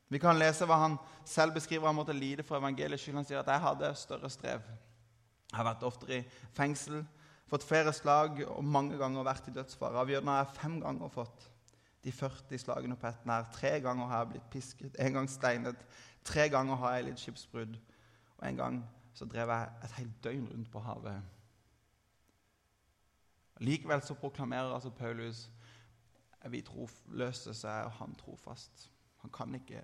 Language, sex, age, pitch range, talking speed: English, male, 20-39, 115-145 Hz, 170 wpm